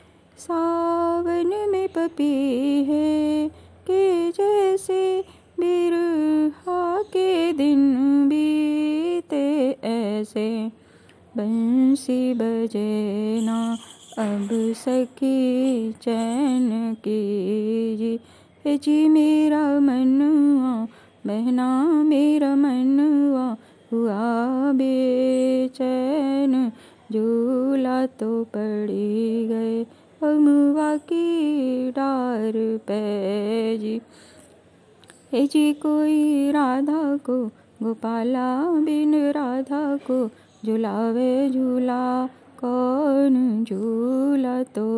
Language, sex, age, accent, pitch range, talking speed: Hindi, female, 20-39, native, 225-290 Hz, 65 wpm